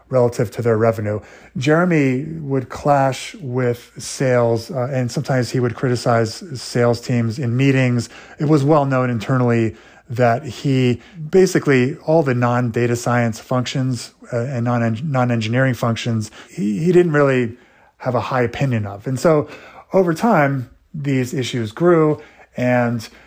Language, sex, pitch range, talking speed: English, male, 115-140 Hz, 145 wpm